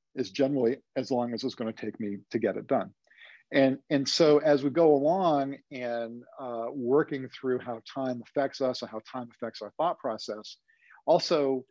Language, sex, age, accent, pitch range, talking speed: English, male, 50-69, American, 120-150 Hz, 185 wpm